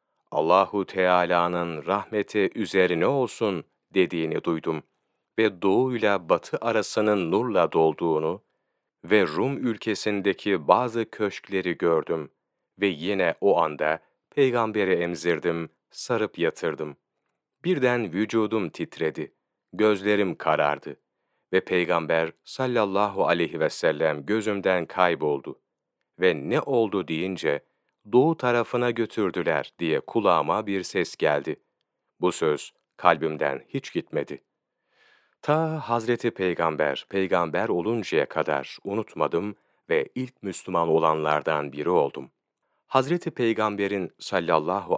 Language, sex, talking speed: Turkish, male, 95 wpm